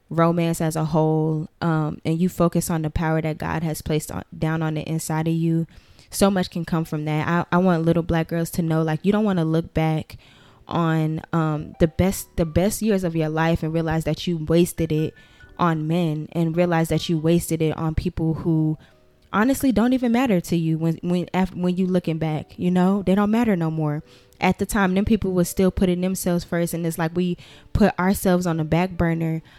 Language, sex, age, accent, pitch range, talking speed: English, female, 10-29, American, 160-195 Hz, 225 wpm